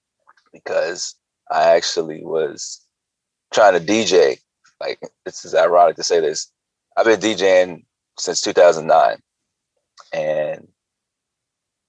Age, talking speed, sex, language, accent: 30-49, 95 wpm, male, English, American